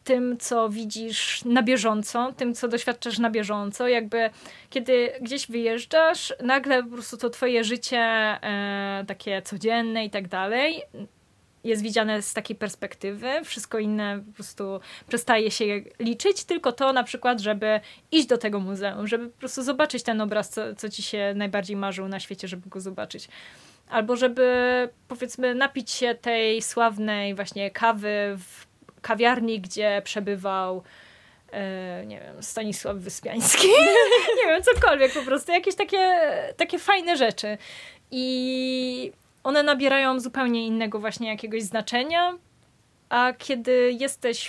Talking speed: 140 wpm